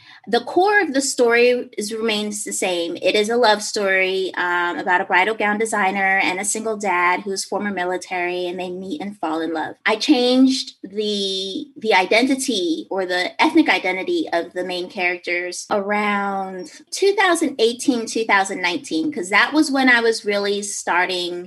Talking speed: 160 wpm